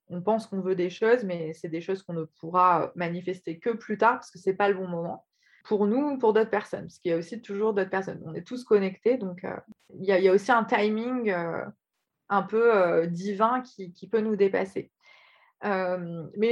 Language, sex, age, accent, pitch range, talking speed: English, female, 20-39, French, 170-205 Hz, 230 wpm